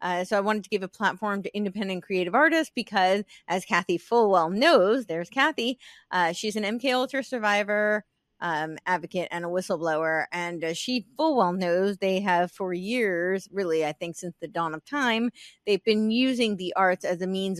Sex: female